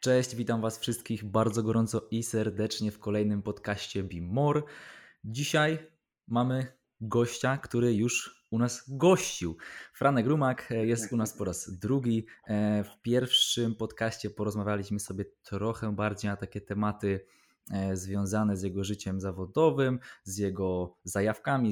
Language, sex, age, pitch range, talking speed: Polish, male, 20-39, 100-125 Hz, 125 wpm